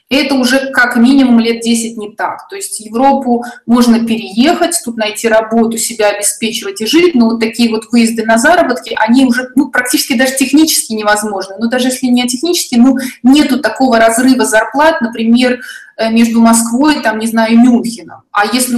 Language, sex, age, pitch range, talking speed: Russian, female, 20-39, 225-255 Hz, 165 wpm